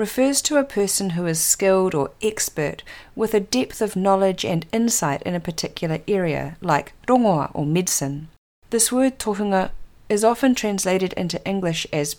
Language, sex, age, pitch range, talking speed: English, female, 40-59, 160-220 Hz, 160 wpm